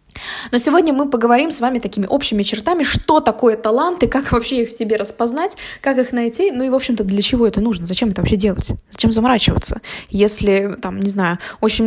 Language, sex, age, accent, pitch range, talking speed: Russian, female, 20-39, native, 210-255 Hz, 200 wpm